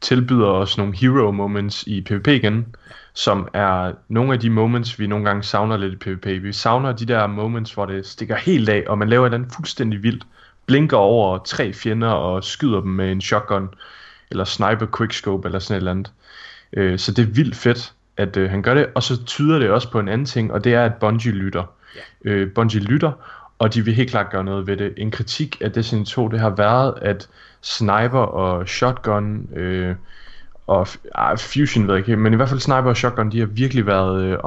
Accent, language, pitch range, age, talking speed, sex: native, Danish, 100-120 Hz, 20-39, 210 wpm, male